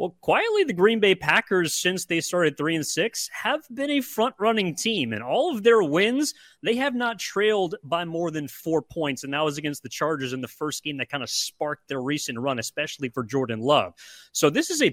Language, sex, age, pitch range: English, male, 30-49, 140-185 Hz